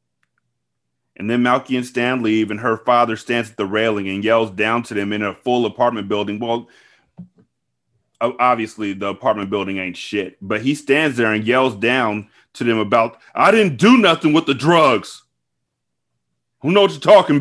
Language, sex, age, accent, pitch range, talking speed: English, male, 30-49, American, 95-125 Hz, 180 wpm